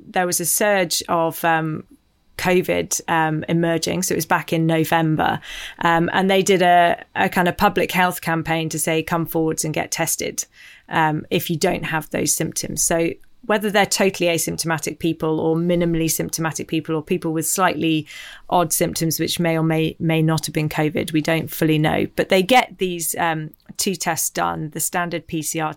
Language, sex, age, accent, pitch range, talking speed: English, female, 30-49, British, 160-190 Hz, 185 wpm